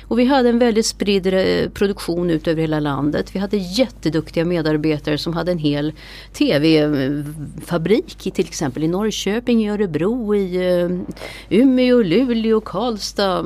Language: English